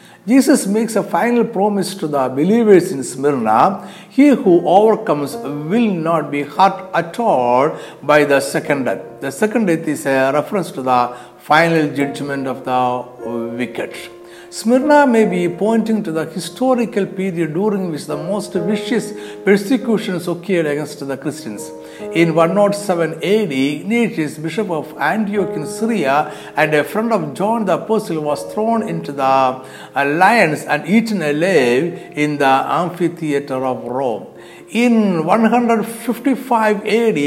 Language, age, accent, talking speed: Malayalam, 60-79, native, 140 wpm